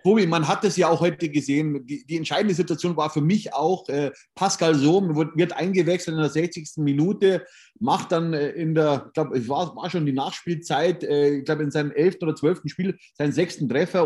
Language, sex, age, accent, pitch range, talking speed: German, male, 30-49, German, 145-175 Hz, 215 wpm